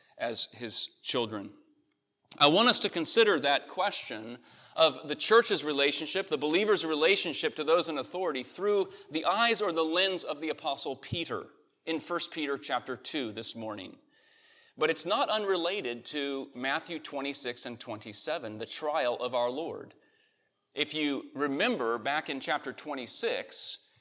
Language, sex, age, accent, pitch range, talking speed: English, male, 30-49, American, 135-200 Hz, 145 wpm